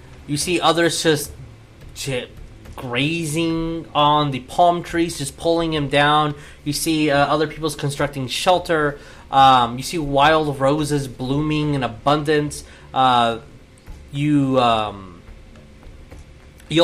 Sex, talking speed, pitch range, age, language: male, 115 wpm, 120-145 Hz, 30-49, English